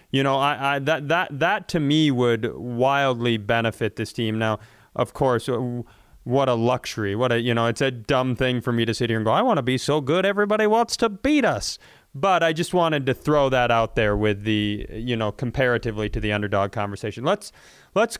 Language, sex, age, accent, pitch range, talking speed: English, male, 30-49, American, 120-150 Hz, 220 wpm